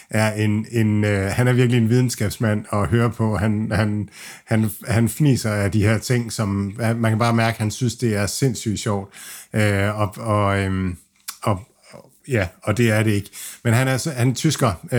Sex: male